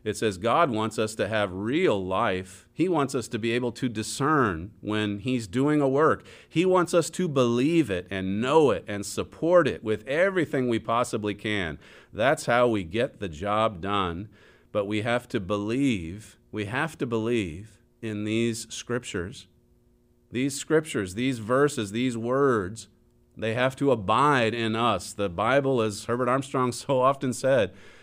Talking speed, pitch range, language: 165 wpm, 105-135 Hz, English